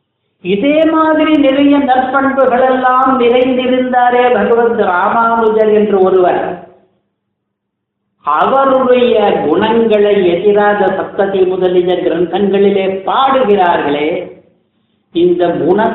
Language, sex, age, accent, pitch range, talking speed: Tamil, female, 50-69, native, 190-240 Hz, 70 wpm